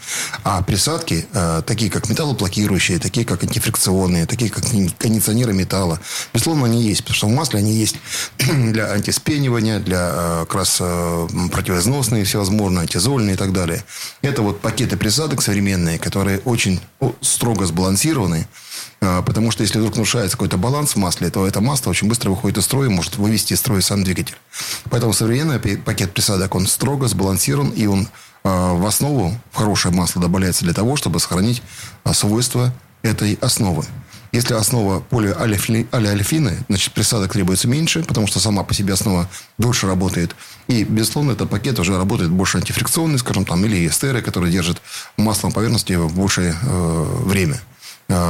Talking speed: 150 wpm